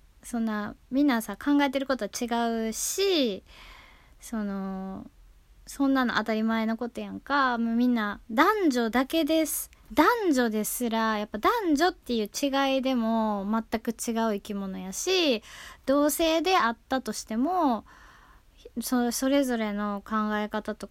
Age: 20-39